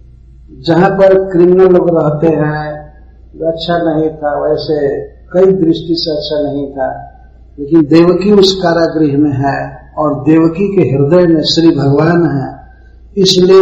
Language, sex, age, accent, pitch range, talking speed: English, male, 50-69, Indian, 130-170 Hz, 130 wpm